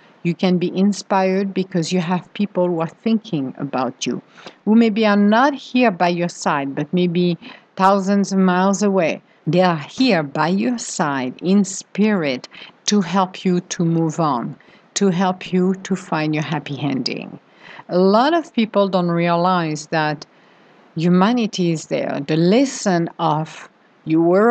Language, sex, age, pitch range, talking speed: English, female, 50-69, 160-200 Hz, 155 wpm